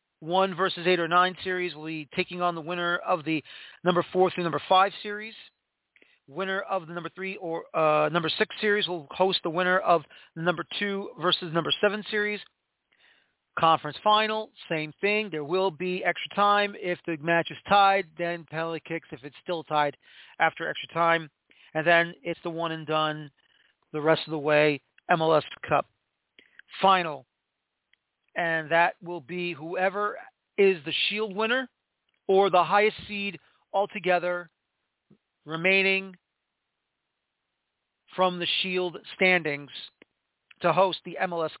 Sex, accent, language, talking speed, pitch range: male, American, English, 150 wpm, 165-200 Hz